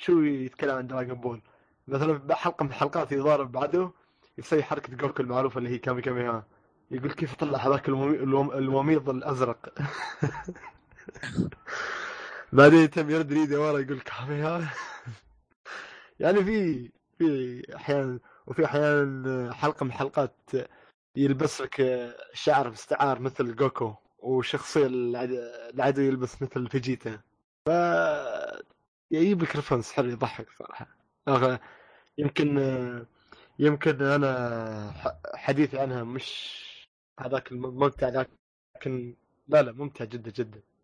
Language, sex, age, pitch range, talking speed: Arabic, male, 20-39, 125-150 Hz, 110 wpm